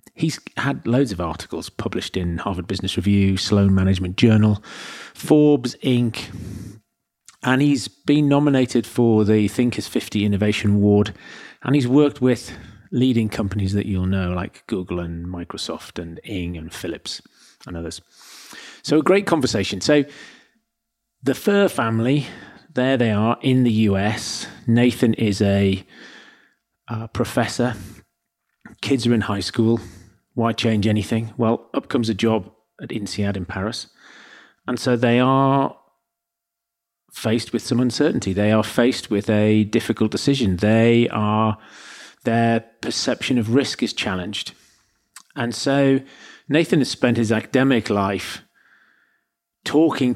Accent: British